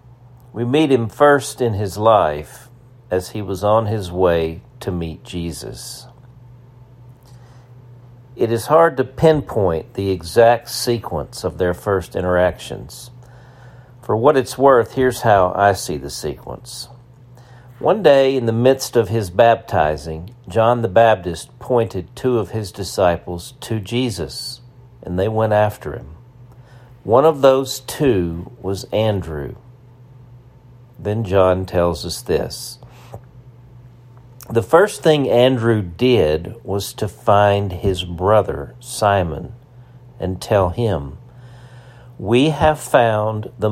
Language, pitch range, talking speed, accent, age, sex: English, 100-125 Hz, 125 wpm, American, 50-69, male